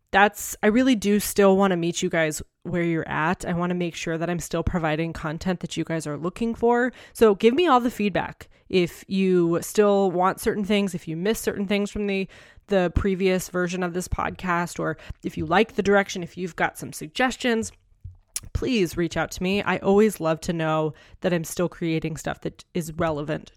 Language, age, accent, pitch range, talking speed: English, 20-39, American, 165-205 Hz, 210 wpm